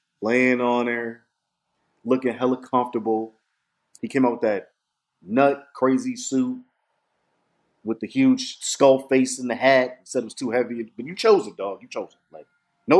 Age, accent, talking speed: 30-49, American, 175 wpm